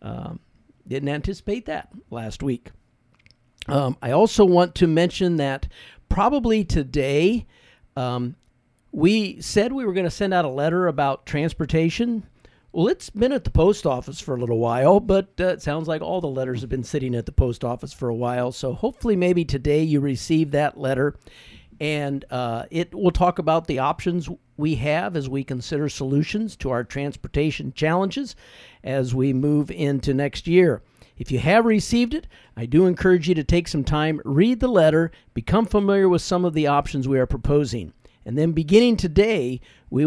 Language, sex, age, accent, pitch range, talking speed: English, male, 50-69, American, 130-180 Hz, 180 wpm